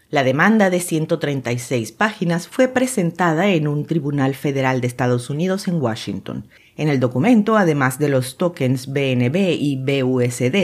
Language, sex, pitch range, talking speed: Spanish, female, 135-190 Hz, 145 wpm